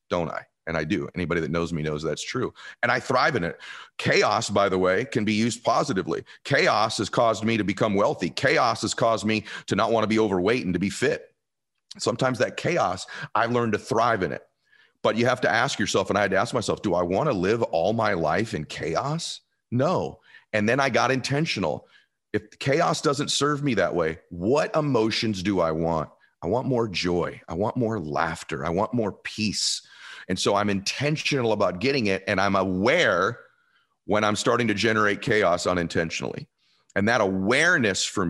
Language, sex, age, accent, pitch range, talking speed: English, male, 40-59, American, 90-120 Hz, 200 wpm